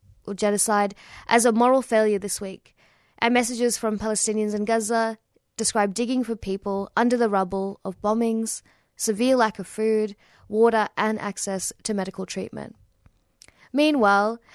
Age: 20-39